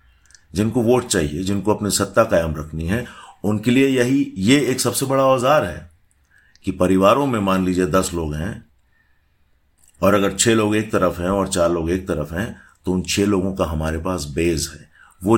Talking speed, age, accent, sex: 190 wpm, 50-69, native, male